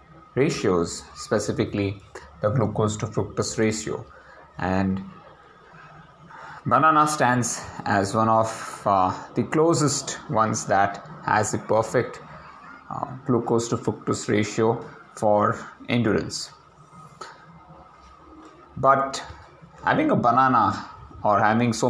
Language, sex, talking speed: English, male, 95 wpm